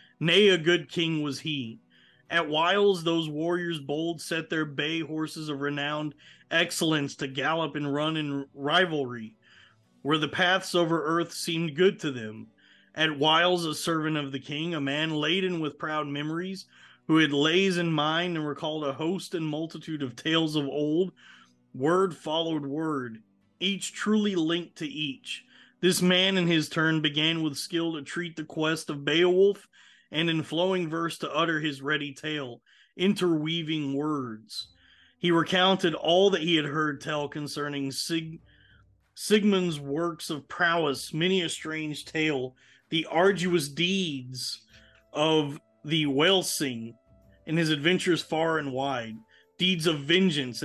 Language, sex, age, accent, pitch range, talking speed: English, male, 30-49, American, 145-170 Hz, 150 wpm